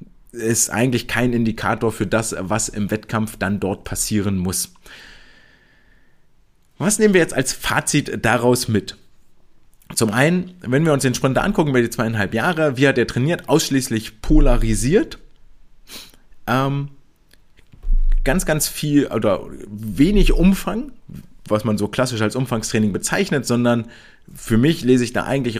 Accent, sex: German, male